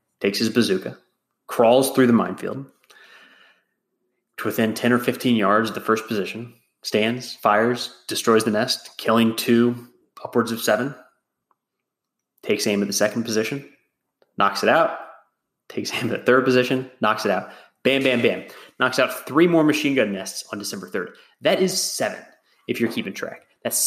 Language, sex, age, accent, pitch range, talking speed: English, male, 20-39, American, 105-130 Hz, 165 wpm